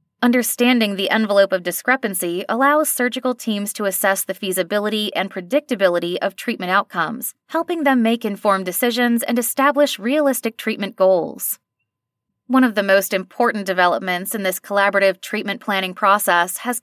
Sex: female